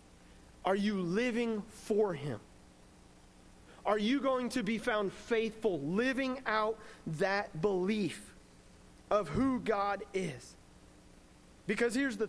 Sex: male